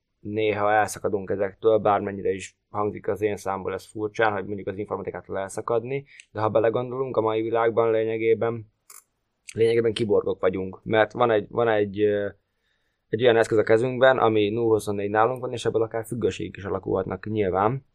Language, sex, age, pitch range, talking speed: Hungarian, male, 20-39, 100-115 Hz, 155 wpm